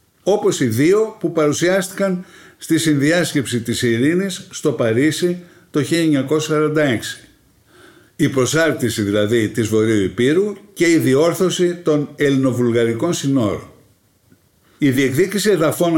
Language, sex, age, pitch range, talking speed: Greek, male, 60-79, 115-165 Hz, 105 wpm